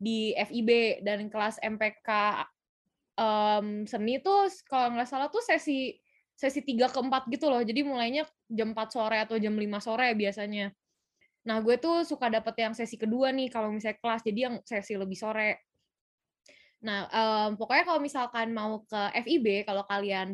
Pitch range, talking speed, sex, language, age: 210-250 Hz, 165 wpm, female, Indonesian, 10-29